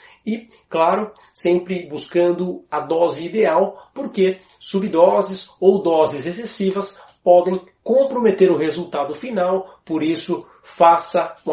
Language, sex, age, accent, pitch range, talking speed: Portuguese, male, 40-59, Brazilian, 155-195 Hz, 110 wpm